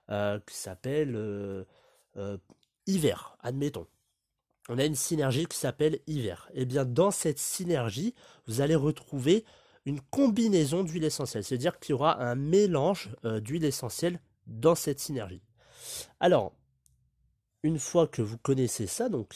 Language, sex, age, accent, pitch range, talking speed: French, male, 30-49, French, 120-175 Hz, 135 wpm